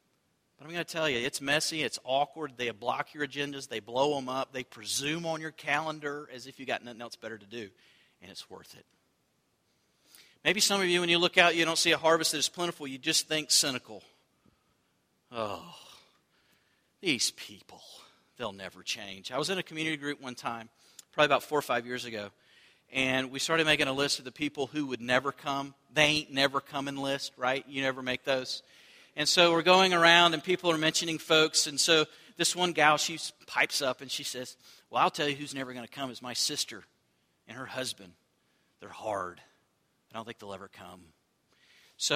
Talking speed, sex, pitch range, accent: 205 wpm, male, 125-155 Hz, American